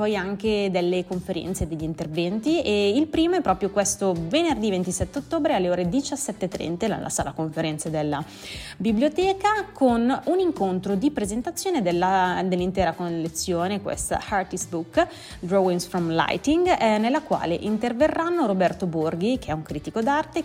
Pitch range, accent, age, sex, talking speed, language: 175-265 Hz, native, 20-39, female, 140 wpm, Italian